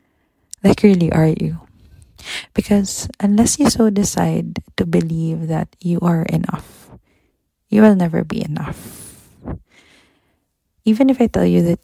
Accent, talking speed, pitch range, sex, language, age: Filipino, 130 wpm, 160-205 Hz, female, English, 20-39